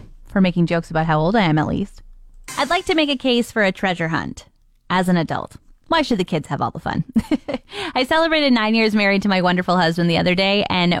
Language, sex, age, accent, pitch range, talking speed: English, female, 20-39, American, 175-245 Hz, 240 wpm